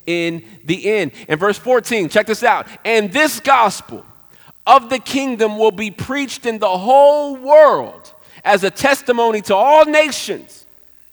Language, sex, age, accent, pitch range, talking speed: English, male, 40-59, American, 185-260 Hz, 150 wpm